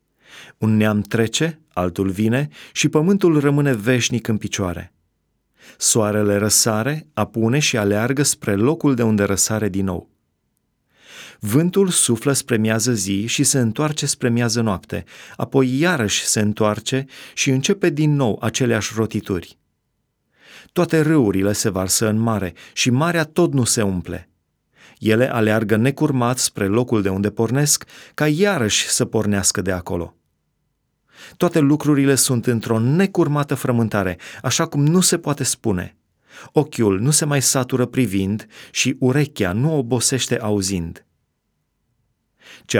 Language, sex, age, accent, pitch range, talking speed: Romanian, male, 30-49, native, 100-140 Hz, 130 wpm